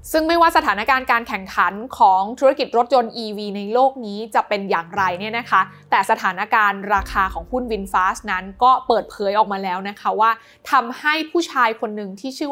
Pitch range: 200-265 Hz